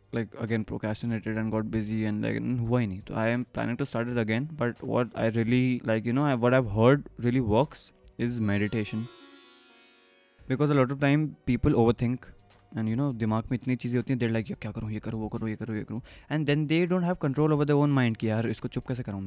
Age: 20-39